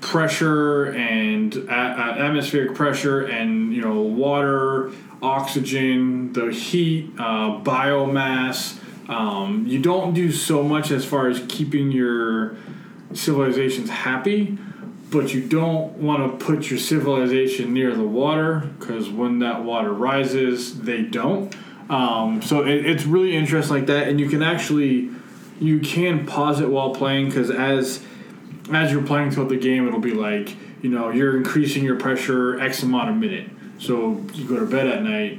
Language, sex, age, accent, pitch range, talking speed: English, male, 20-39, American, 125-185 Hz, 150 wpm